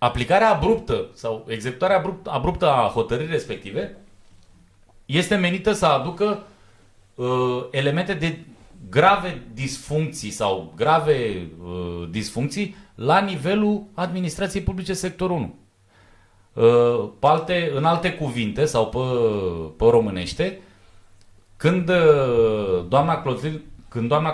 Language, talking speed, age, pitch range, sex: Romanian, 95 wpm, 30-49, 100-160 Hz, male